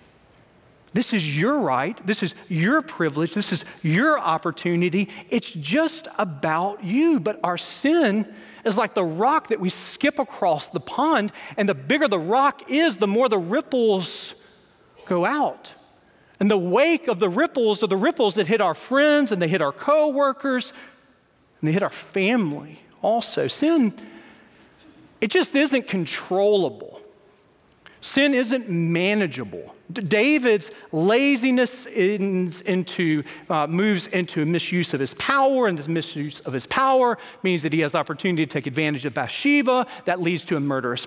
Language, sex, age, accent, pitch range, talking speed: English, male, 40-59, American, 170-260 Hz, 155 wpm